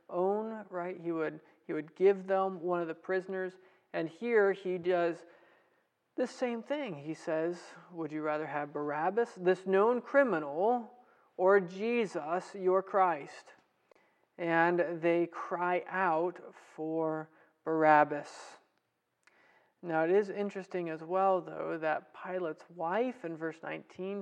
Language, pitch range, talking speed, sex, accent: English, 160-195 Hz, 130 wpm, male, American